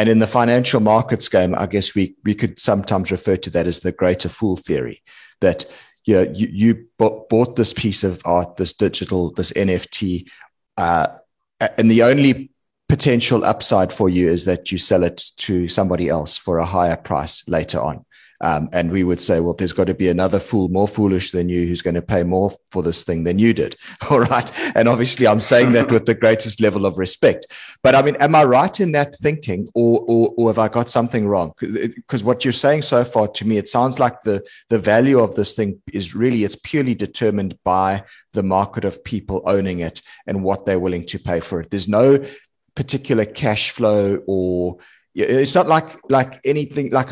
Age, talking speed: 30-49, 210 wpm